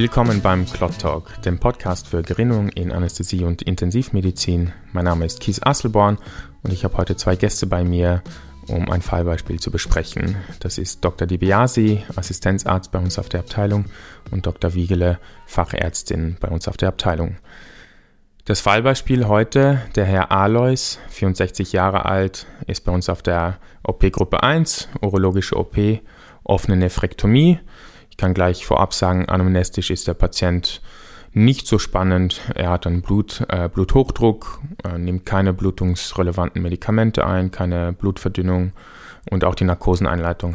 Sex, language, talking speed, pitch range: male, German, 150 wpm, 90-100 Hz